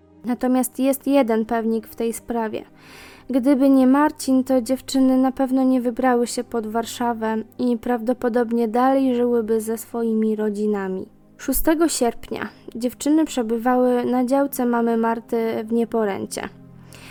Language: Polish